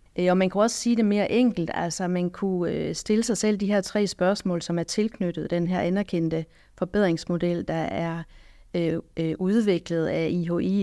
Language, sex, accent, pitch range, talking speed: Danish, female, native, 165-190 Hz, 170 wpm